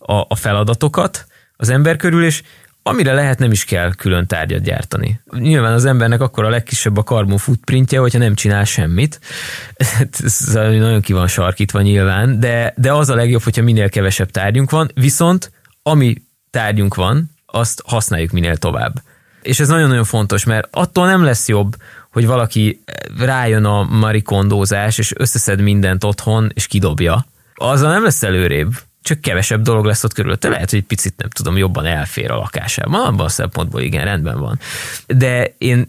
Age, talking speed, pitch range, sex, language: 20-39, 160 wpm, 105-130 Hz, male, English